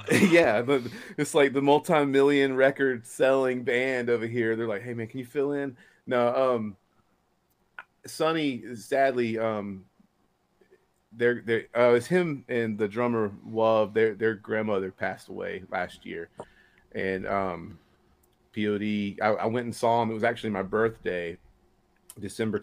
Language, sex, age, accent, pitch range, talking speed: English, male, 30-49, American, 100-125 Hz, 145 wpm